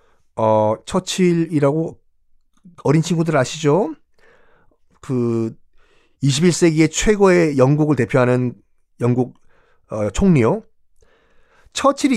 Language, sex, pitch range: Korean, male, 115-180 Hz